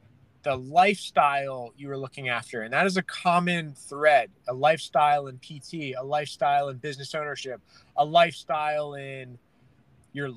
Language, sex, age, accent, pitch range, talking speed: English, male, 20-39, American, 135-165 Hz, 145 wpm